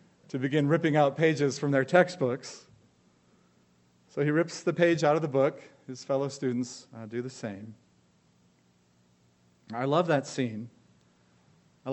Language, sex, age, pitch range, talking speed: English, male, 40-59, 120-160 Hz, 145 wpm